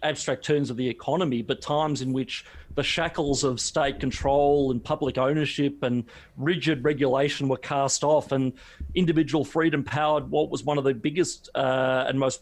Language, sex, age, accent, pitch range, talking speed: English, male, 40-59, Australian, 130-155 Hz, 175 wpm